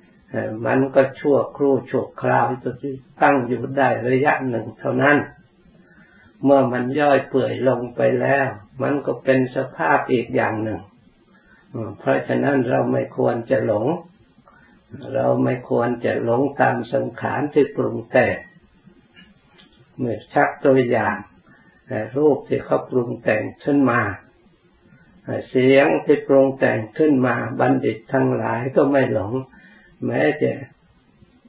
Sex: male